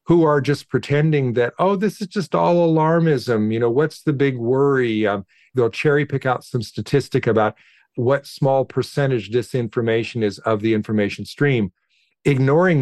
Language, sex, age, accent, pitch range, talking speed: English, male, 50-69, American, 115-145 Hz, 165 wpm